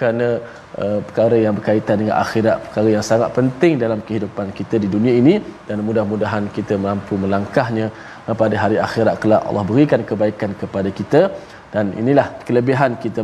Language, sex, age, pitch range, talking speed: Malayalam, male, 20-39, 110-135 Hz, 160 wpm